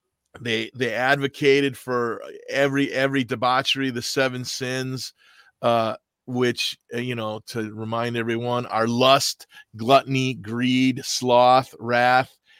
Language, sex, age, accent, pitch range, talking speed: English, male, 40-59, American, 125-140 Hz, 110 wpm